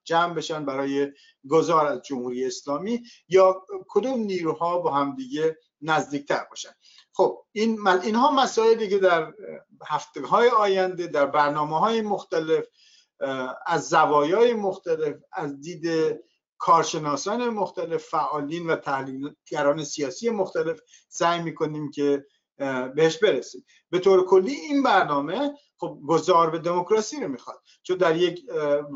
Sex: male